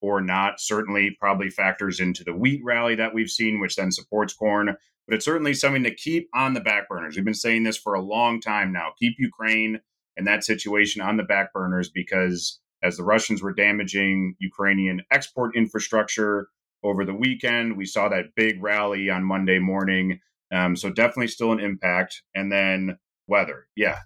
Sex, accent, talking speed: male, American, 185 wpm